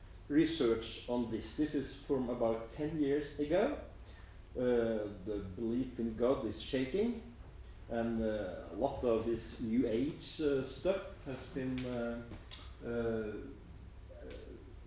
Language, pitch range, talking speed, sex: English, 105-140 Hz, 120 wpm, male